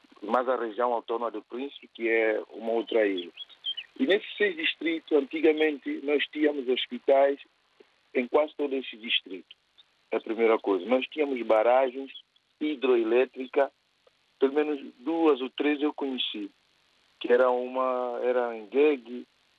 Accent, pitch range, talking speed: Brazilian, 125-170 Hz, 135 wpm